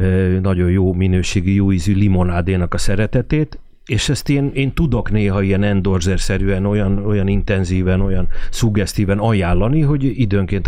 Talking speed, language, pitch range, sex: 135 wpm, Hungarian, 90-115 Hz, male